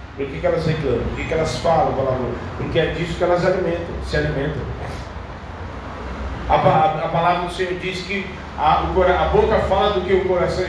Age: 40-59